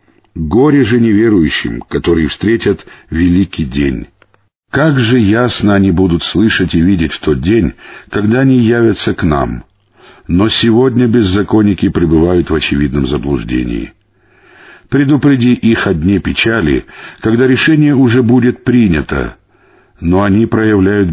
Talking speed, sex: 120 wpm, male